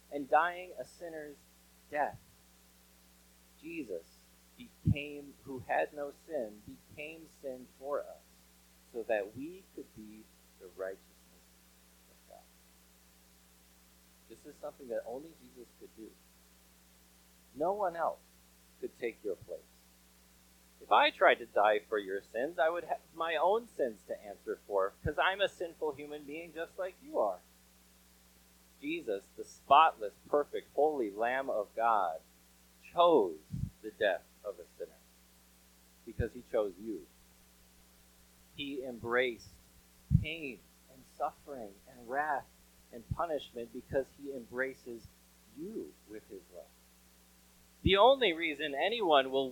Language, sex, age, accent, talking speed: English, male, 30-49, American, 125 wpm